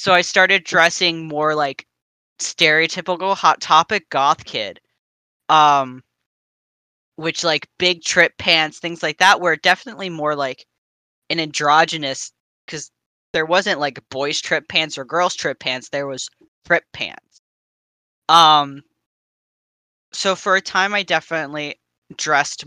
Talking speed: 130 wpm